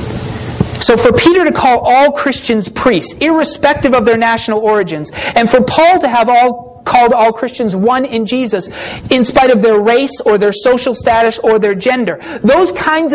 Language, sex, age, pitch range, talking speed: English, male, 40-59, 235-320 Hz, 180 wpm